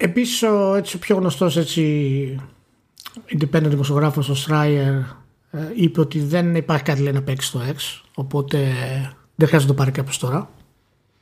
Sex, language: male, Greek